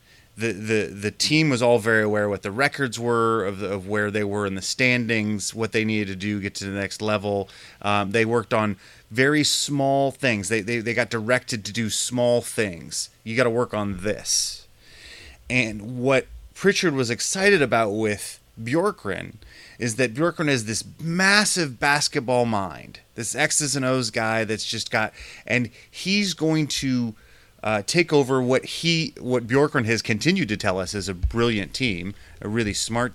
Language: English